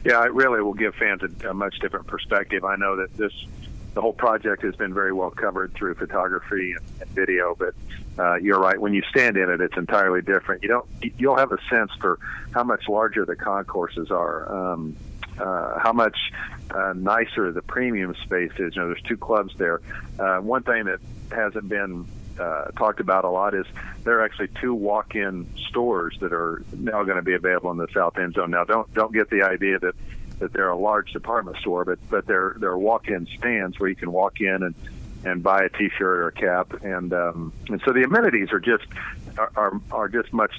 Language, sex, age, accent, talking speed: English, male, 50-69, American, 215 wpm